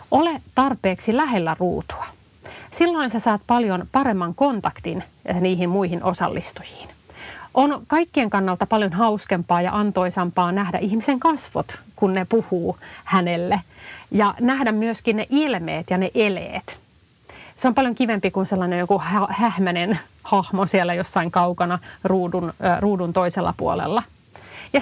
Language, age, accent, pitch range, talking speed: Finnish, 30-49, native, 185-255 Hz, 125 wpm